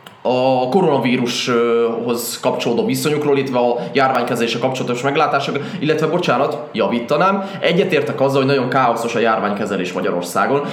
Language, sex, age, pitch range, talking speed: Hungarian, male, 20-39, 125-155 Hz, 110 wpm